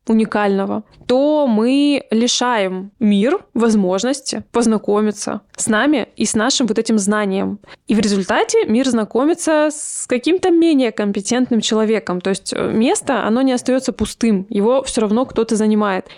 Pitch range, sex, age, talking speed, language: 210-255 Hz, female, 20-39, 135 wpm, Russian